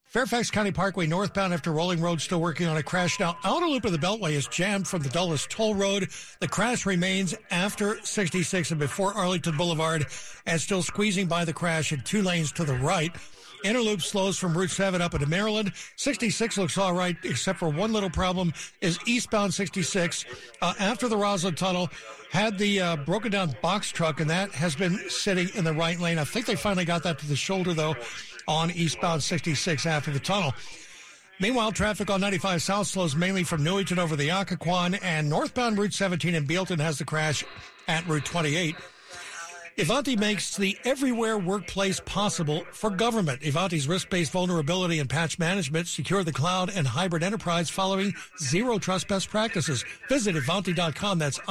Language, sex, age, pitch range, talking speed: English, male, 60-79, 165-200 Hz, 185 wpm